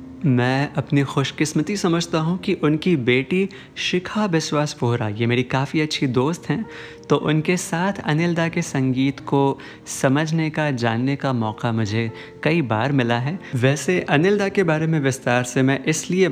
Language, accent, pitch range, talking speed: Hindi, native, 130-170 Hz, 165 wpm